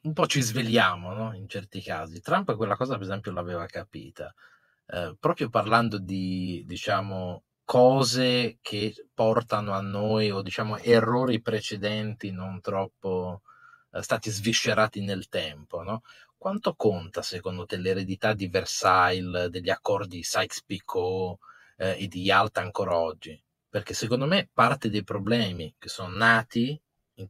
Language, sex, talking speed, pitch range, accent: Italian, male, 140 wpm, 95-115 Hz, native